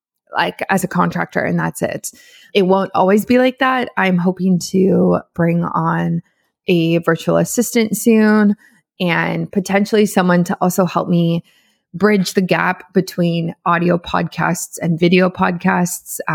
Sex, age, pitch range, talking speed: female, 20-39, 170-205 Hz, 140 wpm